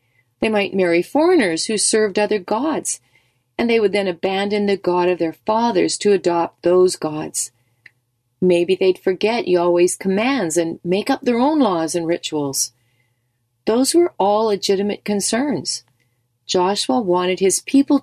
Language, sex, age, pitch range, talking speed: English, female, 40-59, 160-215 Hz, 145 wpm